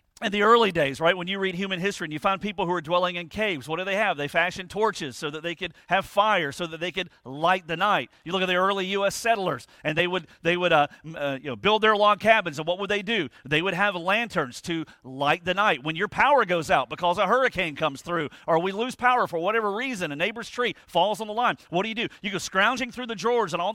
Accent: American